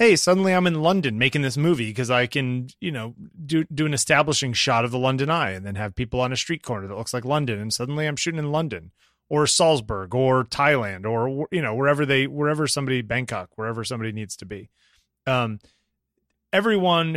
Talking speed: 205 wpm